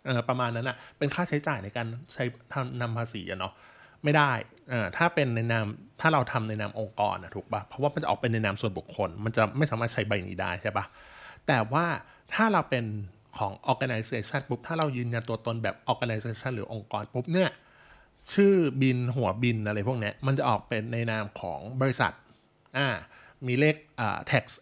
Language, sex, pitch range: Thai, male, 110-140 Hz